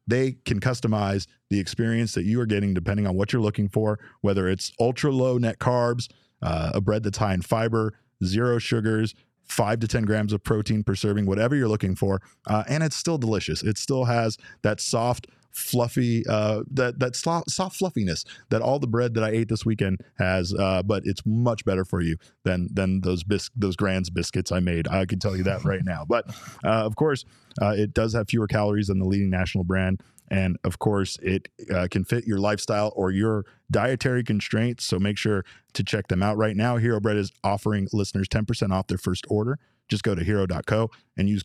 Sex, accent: male, American